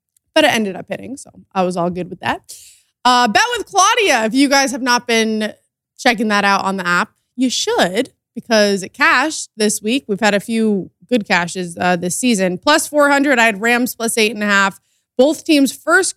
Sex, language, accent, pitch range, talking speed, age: female, English, American, 195-250 Hz, 210 wpm, 20-39